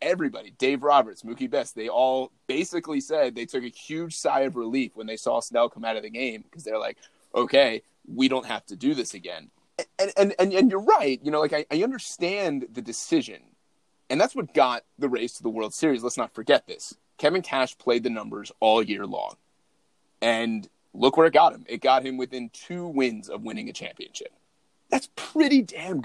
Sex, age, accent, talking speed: male, 30-49, American, 210 wpm